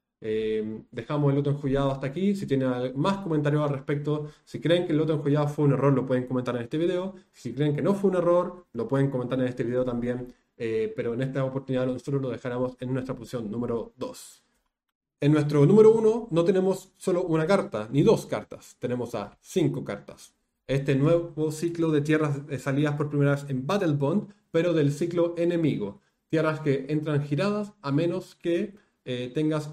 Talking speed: 195 wpm